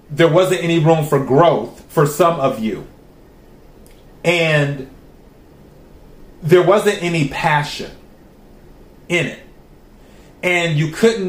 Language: English